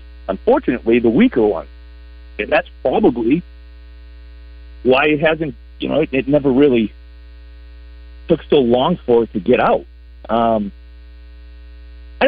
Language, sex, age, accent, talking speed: English, male, 50-69, American, 125 wpm